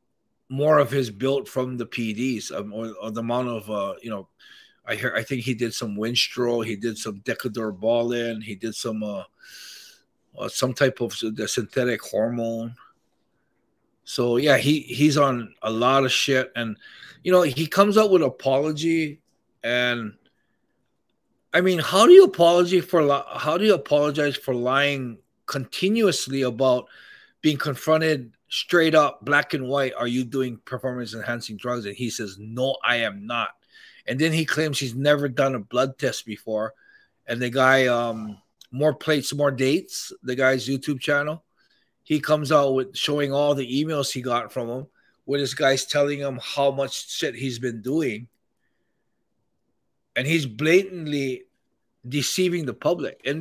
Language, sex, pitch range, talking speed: English, male, 120-155 Hz, 165 wpm